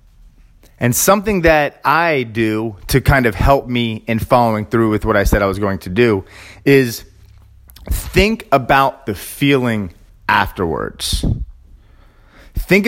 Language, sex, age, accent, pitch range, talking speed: English, male, 30-49, American, 110-150 Hz, 135 wpm